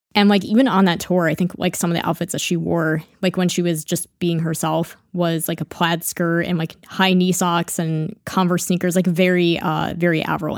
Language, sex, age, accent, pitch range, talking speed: English, female, 20-39, American, 160-180 Hz, 235 wpm